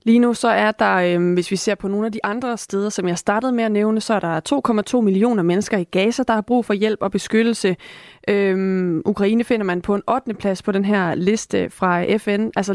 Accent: native